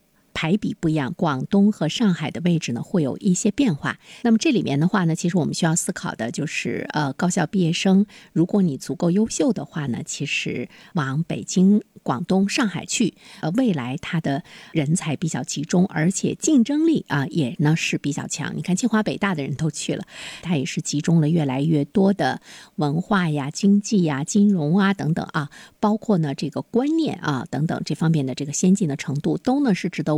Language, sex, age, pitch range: Chinese, female, 50-69, 150-205 Hz